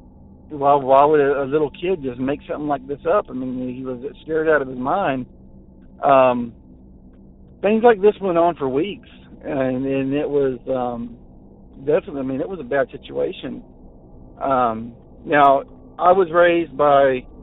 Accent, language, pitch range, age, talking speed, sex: American, English, 120-155 Hz, 50-69, 160 wpm, male